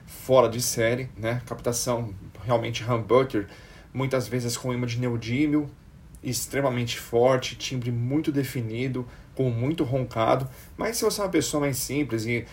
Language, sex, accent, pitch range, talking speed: Portuguese, male, Brazilian, 120-145 Hz, 145 wpm